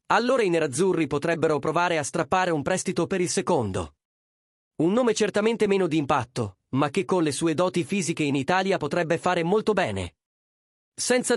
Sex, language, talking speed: male, Italian, 170 wpm